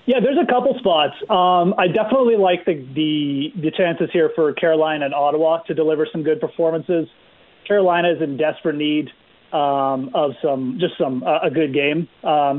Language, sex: English, male